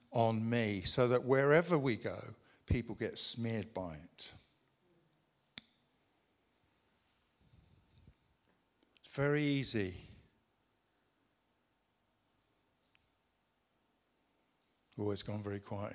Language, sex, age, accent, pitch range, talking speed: English, male, 60-79, British, 105-150 Hz, 75 wpm